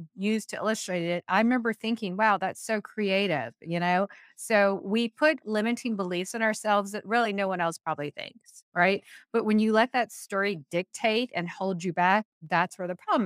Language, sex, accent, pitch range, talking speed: English, female, American, 185-235 Hz, 195 wpm